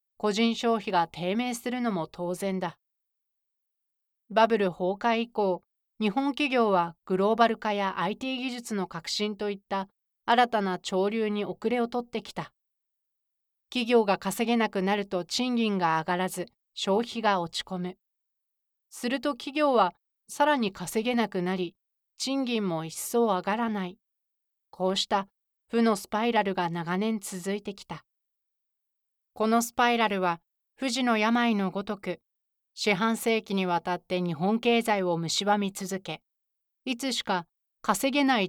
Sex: female